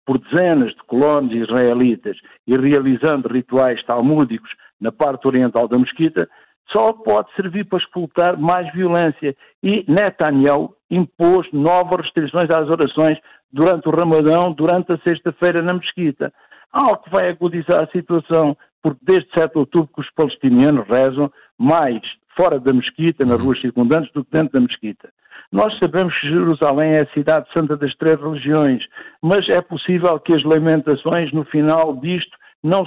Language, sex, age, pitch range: Portuguese, male, 60-79, 145-175 Hz